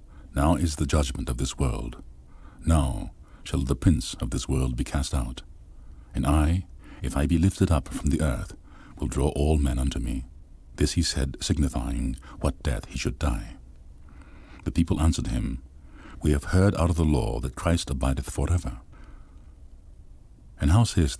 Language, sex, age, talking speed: English, male, 50-69, 170 wpm